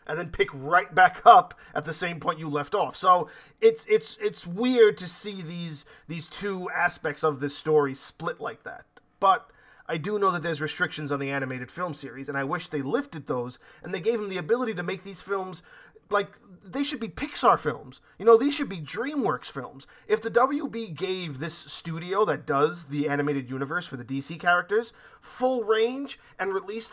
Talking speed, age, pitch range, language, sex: 200 wpm, 30-49, 155-230 Hz, English, male